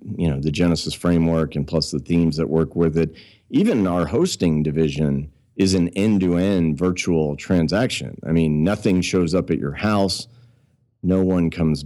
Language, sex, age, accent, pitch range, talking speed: English, male, 40-59, American, 75-95 Hz, 165 wpm